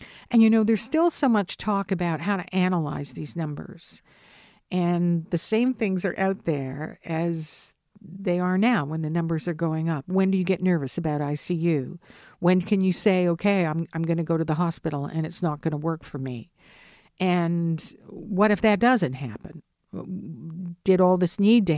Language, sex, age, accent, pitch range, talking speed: English, female, 50-69, American, 155-190 Hz, 185 wpm